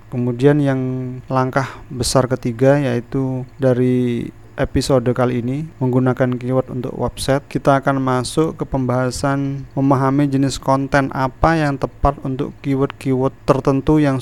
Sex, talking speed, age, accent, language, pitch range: male, 120 wpm, 30-49, native, Indonesian, 120-135 Hz